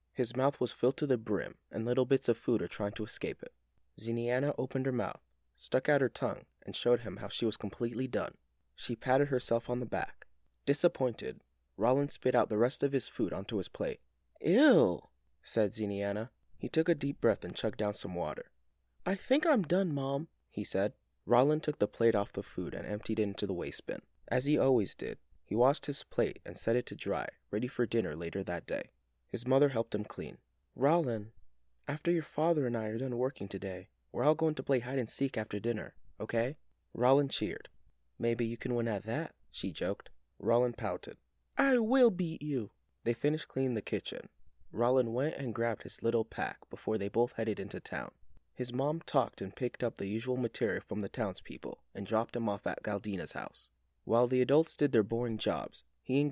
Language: English